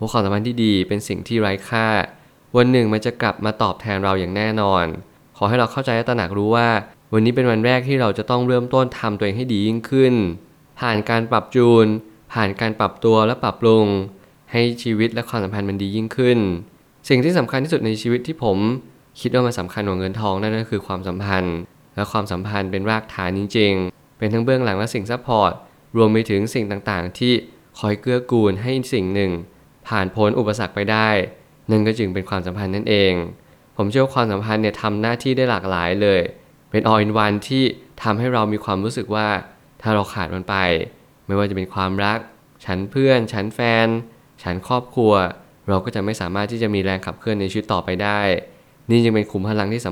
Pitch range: 100-120 Hz